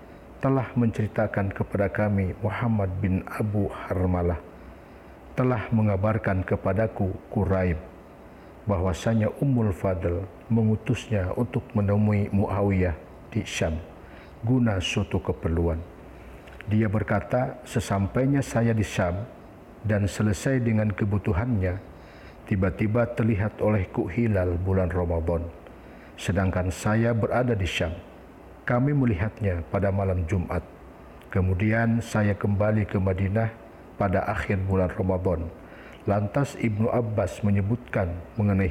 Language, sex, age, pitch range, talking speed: Indonesian, male, 50-69, 90-110 Hz, 100 wpm